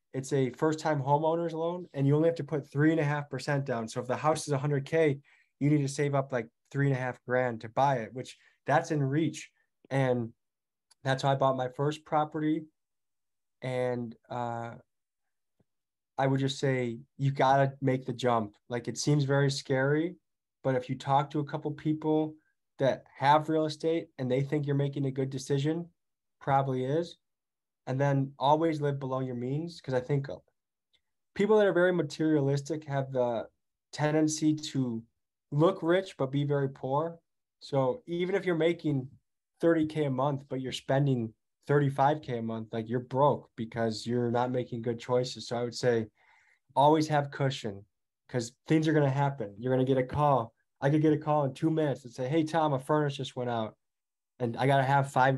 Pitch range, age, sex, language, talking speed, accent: 125-150 Hz, 20-39, male, English, 195 wpm, American